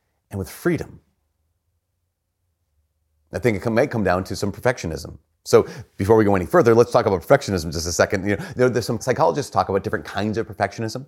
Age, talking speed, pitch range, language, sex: 30-49, 200 wpm, 95-130 Hz, English, male